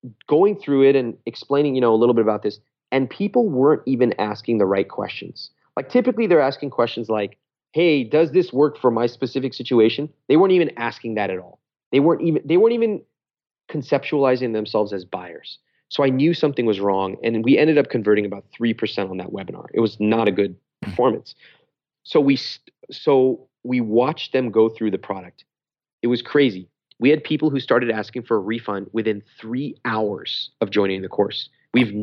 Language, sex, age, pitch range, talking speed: English, male, 30-49, 105-135 Hz, 195 wpm